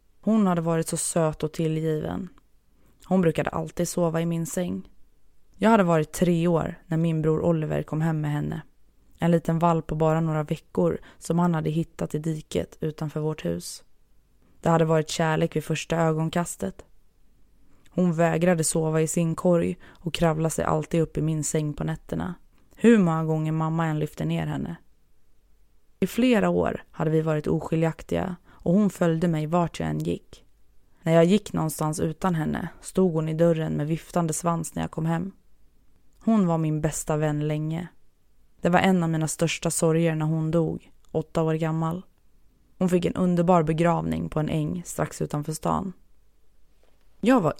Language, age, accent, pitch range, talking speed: Swedish, 20-39, native, 155-170 Hz, 175 wpm